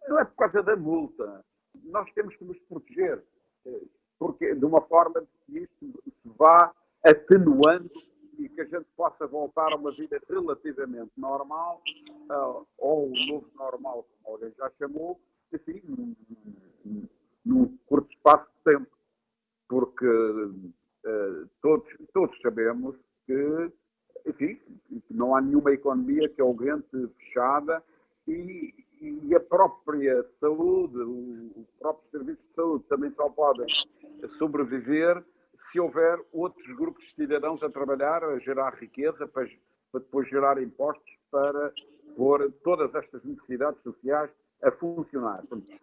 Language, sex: Portuguese, male